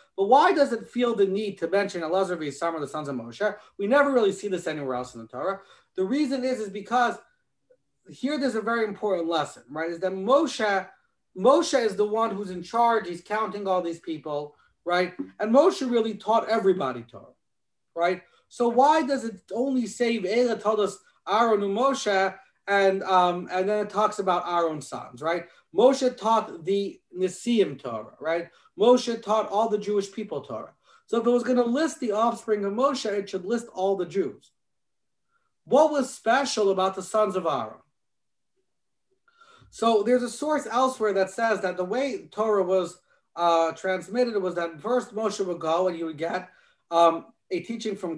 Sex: male